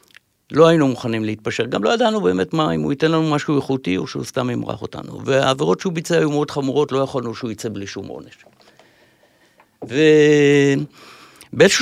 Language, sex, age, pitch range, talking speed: Hebrew, male, 60-79, 110-150 Hz, 175 wpm